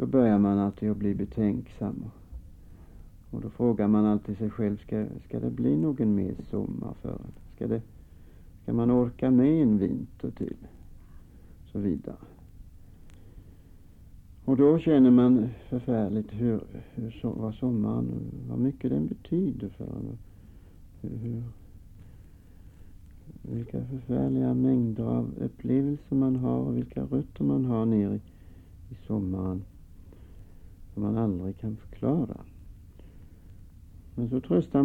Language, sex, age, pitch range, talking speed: Swedish, male, 60-79, 90-120 Hz, 125 wpm